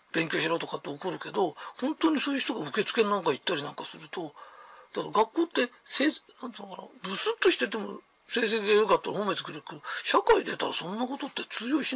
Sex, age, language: male, 40-59, Japanese